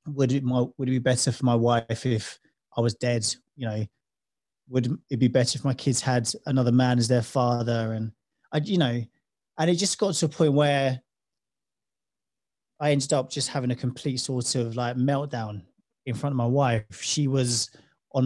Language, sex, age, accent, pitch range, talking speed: English, male, 30-49, British, 120-150 Hz, 195 wpm